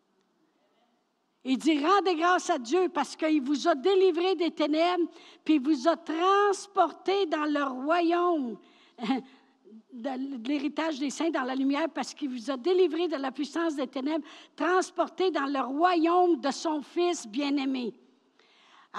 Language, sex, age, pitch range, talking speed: French, female, 60-79, 300-365 Hz, 150 wpm